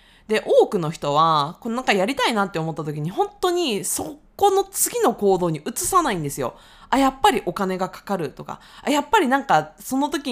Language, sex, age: Japanese, female, 20-39